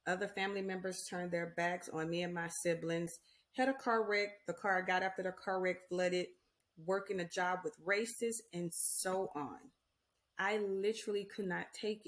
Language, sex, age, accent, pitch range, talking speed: English, female, 30-49, American, 175-225 Hz, 180 wpm